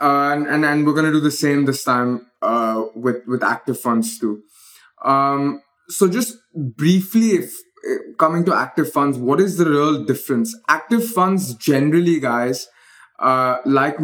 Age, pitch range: 20-39, 135-180 Hz